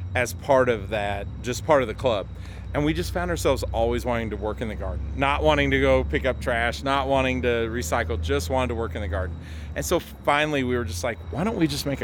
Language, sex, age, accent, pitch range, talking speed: English, male, 40-59, American, 105-130 Hz, 255 wpm